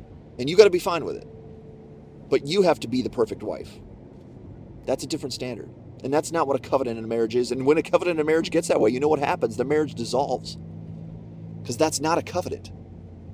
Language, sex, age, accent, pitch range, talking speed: English, male, 30-49, American, 100-125 Hz, 235 wpm